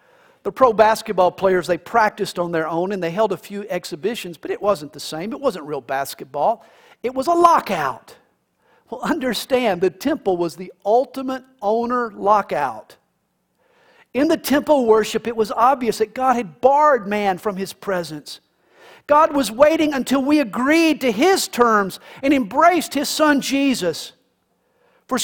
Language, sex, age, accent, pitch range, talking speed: English, male, 50-69, American, 185-270 Hz, 160 wpm